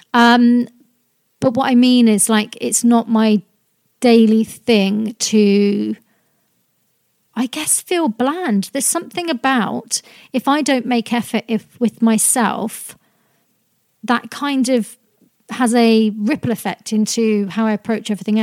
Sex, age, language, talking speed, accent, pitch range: female, 40-59, English, 130 wpm, British, 210-240 Hz